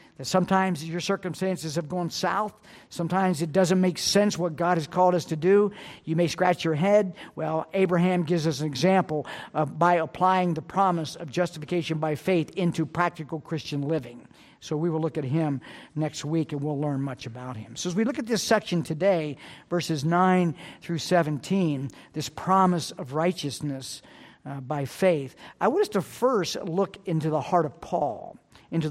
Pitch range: 160-215 Hz